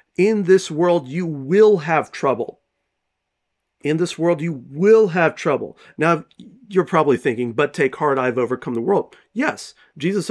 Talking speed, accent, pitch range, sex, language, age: 155 wpm, American, 145-195 Hz, male, English, 40-59